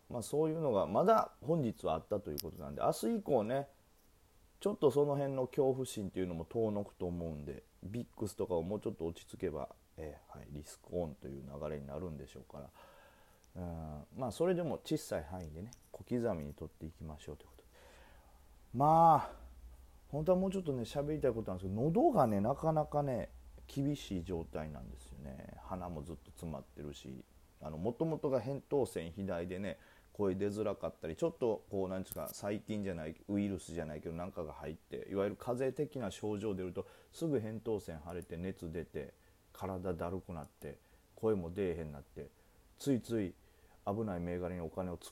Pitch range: 80-120 Hz